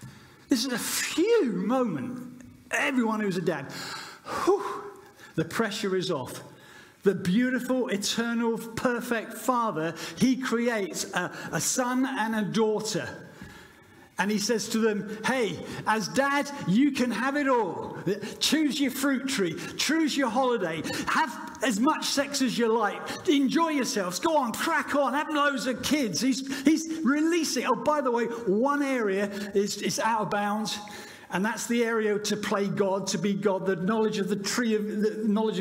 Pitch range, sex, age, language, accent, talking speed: 205-265 Hz, male, 50-69, English, British, 160 wpm